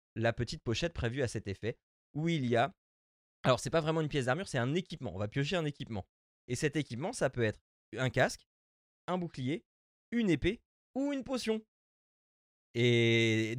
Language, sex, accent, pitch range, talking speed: French, male, French, 110-160 Hz, 185 wpm